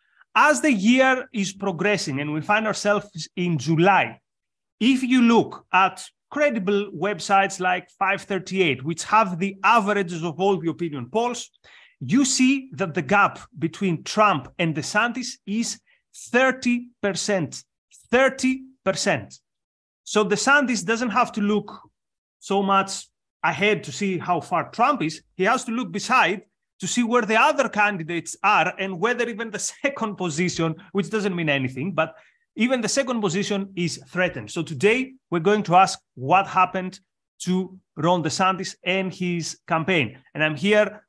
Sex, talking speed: male, 150 wpm